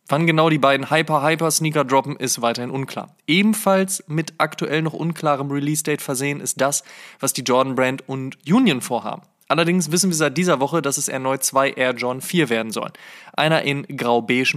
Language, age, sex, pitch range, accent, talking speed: German, 20-39, male, 130-160 Hz, German, 175 wpm